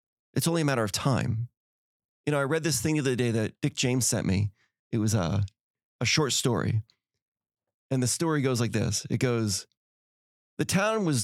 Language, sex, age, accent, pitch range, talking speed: English, male, 30-49, American, 110-145 Hz, 200 wpm